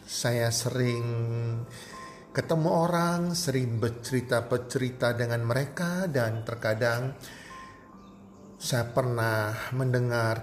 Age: 40-59